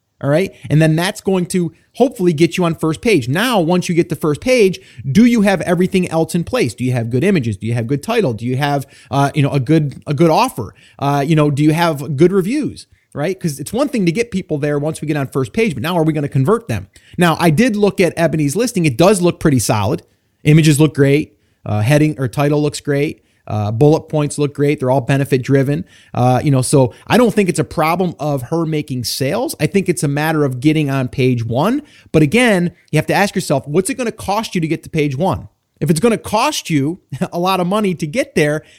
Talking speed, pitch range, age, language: 250 wpm, 135-180 Hz, 30-49, English